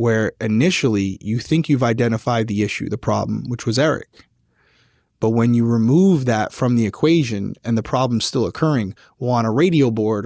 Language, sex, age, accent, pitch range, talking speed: English, male, 20-39, American, 115-145 Hz, 180 wpm